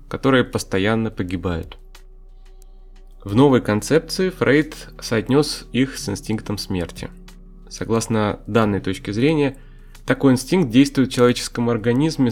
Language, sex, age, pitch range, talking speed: Russian, male, 20-39, 100-130 Hz, 105 wpm